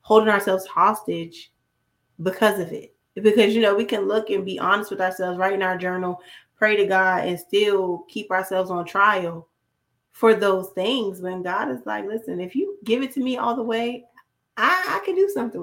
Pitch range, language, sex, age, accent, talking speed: 185-220 Hz, English, female, 20-39, American, 200 wpm